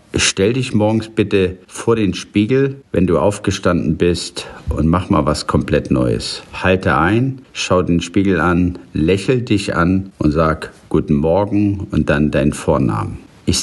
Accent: German